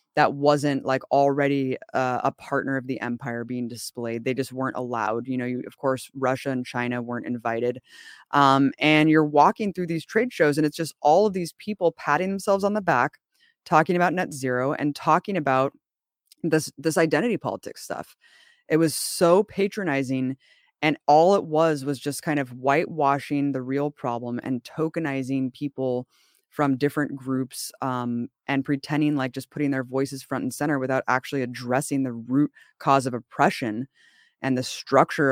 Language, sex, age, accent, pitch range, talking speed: English, female, 20-39, American, 130-160 Hz, 170 wpm